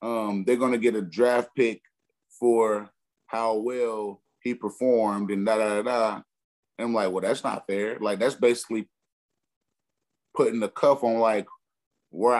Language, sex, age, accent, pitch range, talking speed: English, male, 30-49, American, 105-125 Hz, 165 wpm